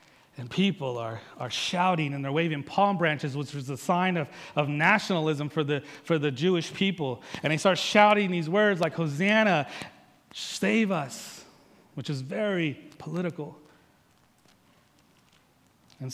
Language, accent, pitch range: English, American, 135-180 Hz